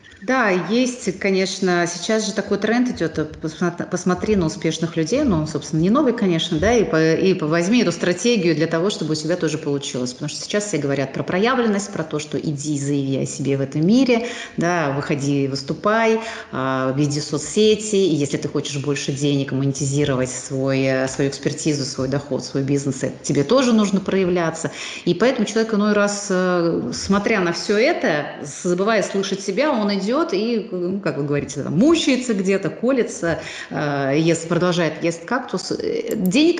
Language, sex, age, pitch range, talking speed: Russian, female, 30-49, 150-210 Hz, 165 wpm